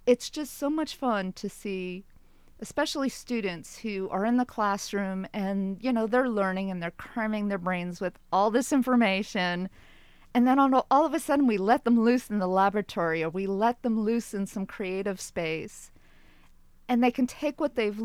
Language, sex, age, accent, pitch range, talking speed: English, female, 40-59, American, 190-245 Hz, 185 wpm